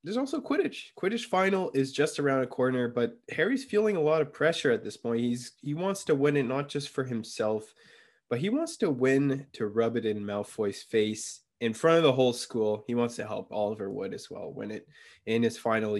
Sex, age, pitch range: male, 20-39, 110-135 Hz